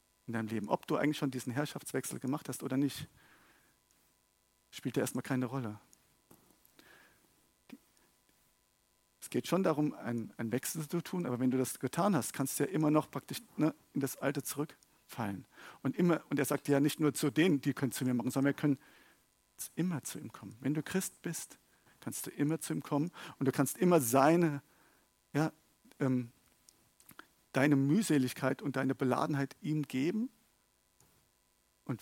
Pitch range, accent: 130-150 Hz, German